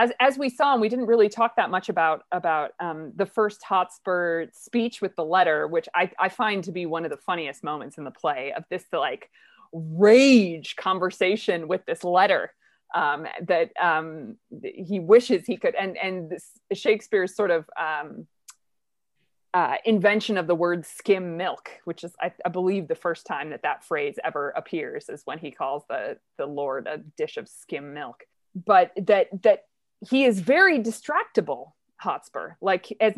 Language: English